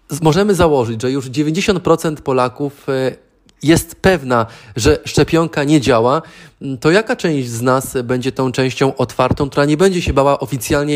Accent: native